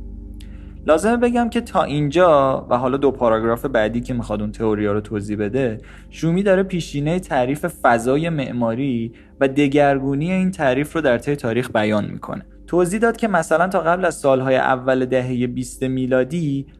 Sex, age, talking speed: male, 20-39, 155 wpm